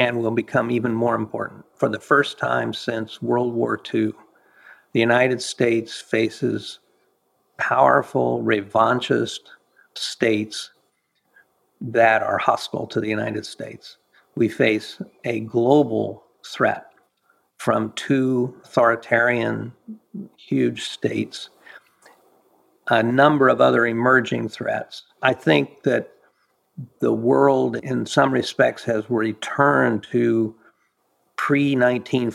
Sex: male